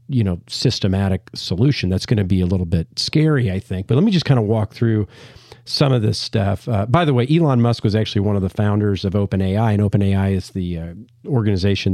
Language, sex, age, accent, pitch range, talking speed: English, male, 40-59, American, 100-125 Hz, 230 wpm